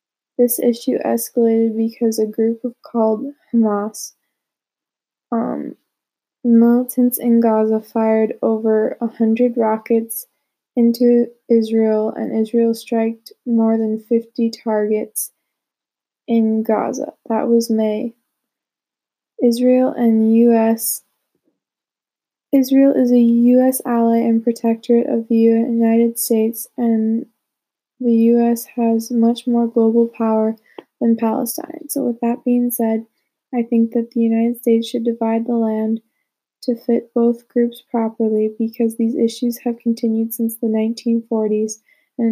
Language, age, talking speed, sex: English, 10-29, 120 wpm, female